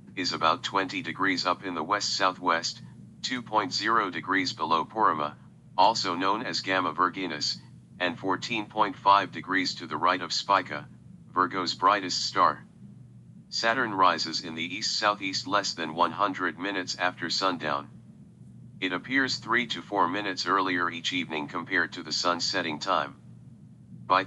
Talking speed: 140 wpm